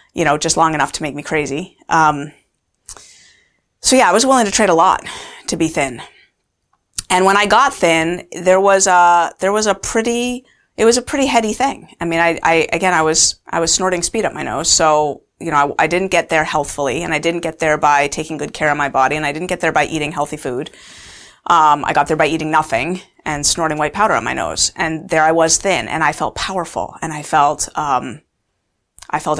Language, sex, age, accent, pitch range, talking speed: English, female, 30-49, American, 155-205 Hz, 230 wpm